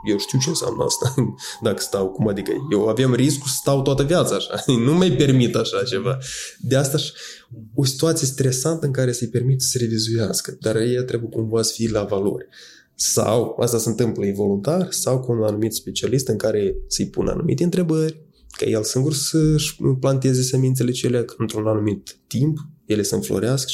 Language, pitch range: Romanian, 115-155 Hz